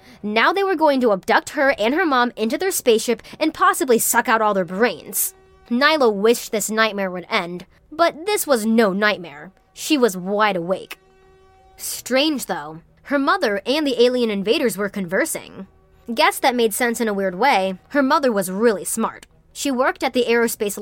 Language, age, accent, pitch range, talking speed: English, 20-39, American, 200-265 Hz, 180 wpm